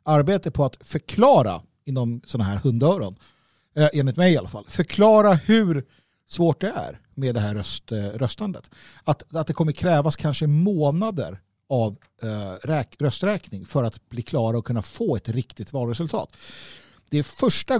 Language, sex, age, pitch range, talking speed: Swedish, male, 50-69, 115-165 Hz, 150 wpm